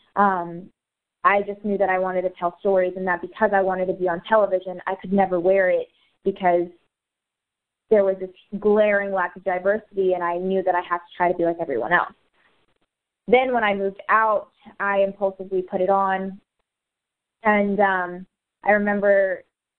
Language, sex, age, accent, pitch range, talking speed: English, female, 20-39, American, 185-205 Hz, 180 wpm